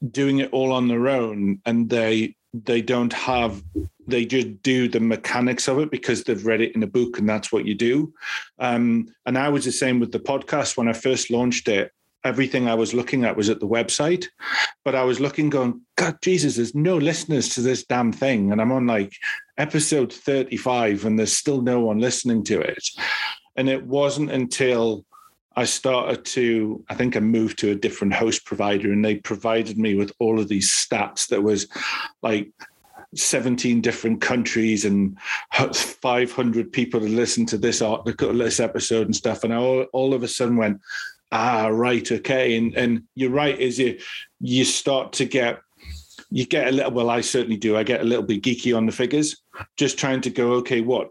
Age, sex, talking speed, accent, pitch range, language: 40-59, male, 195 wpm, British, 110-130 Hz, English